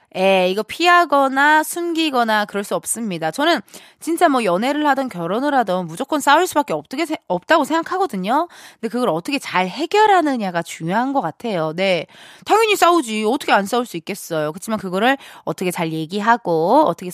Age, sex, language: 20-39, female, Korean